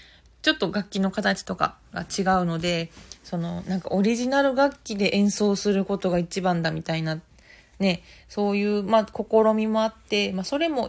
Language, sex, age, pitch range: Japanese, female, 20-39, 190-240 Hz